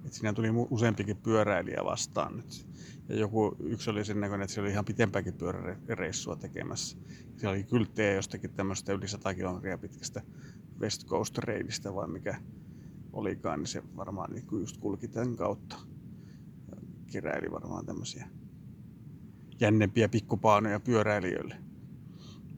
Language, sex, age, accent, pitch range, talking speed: Finnish, male, 30-49, native, 105-120 Hz, 120 wpm